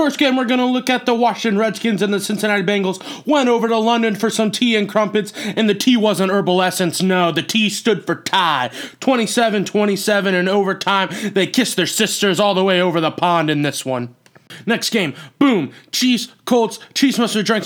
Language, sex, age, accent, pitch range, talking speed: English, male, 20-39, American, 180-225 Hz, 205 wpm